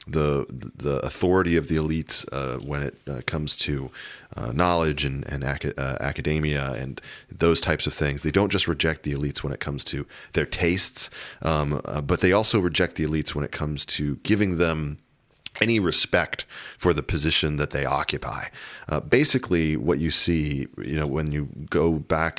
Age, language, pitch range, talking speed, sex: 40-59, English, 70-85 Hz, 185 wpm, male